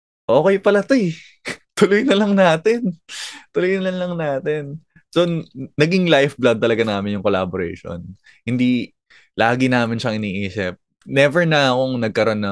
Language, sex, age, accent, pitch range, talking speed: Filipino, male, 20-39, native, 95-135 Hz, 140 wpm